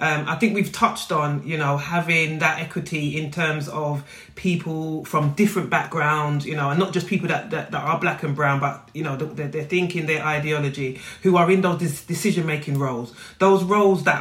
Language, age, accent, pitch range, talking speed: English, 30-49, British, 145-180 Hz, 205 wpm